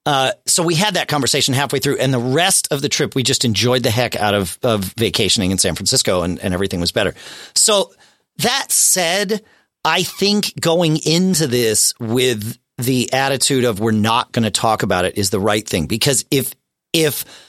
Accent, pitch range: American, 105-150 Hz